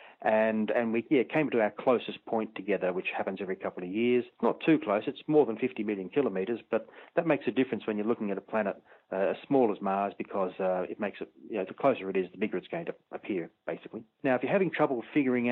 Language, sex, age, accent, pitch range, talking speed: English, male, 40-59, Australian, 105-130 Hz, 255 wpm